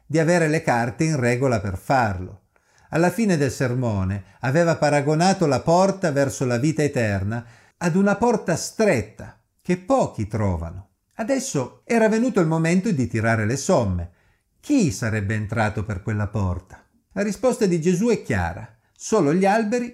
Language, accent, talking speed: Italian, native, 155 wpm